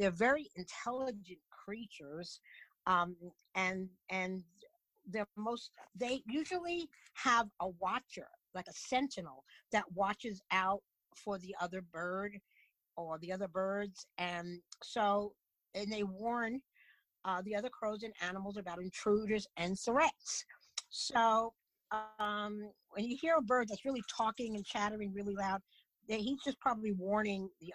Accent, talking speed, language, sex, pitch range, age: American, 135 wpm, English, female, 185-235 Hz, 50-69